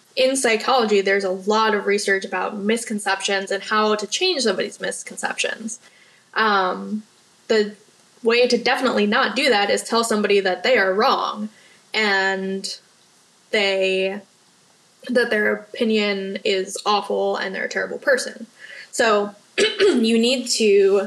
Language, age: English, 10-29